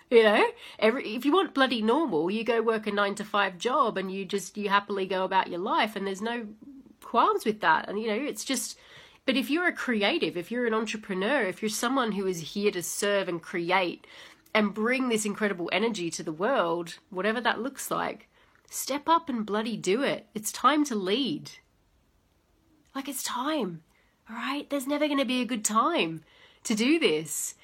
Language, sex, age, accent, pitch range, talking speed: English, female, 30-49, Australian, 190-255 Hz, 200 wpm